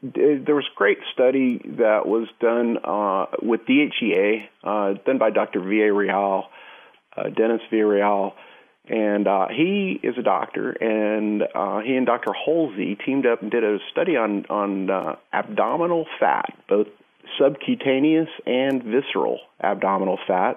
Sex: male